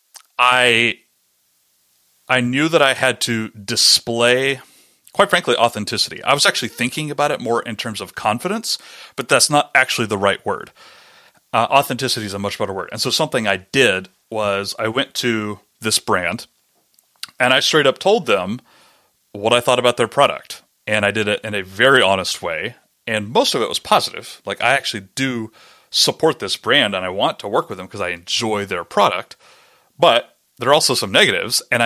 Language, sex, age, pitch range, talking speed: English, male, 30-49, 105-130 Hz, 190 wpm